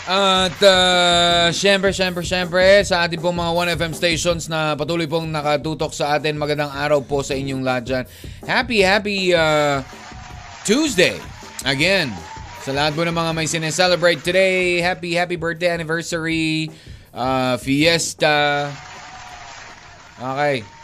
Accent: native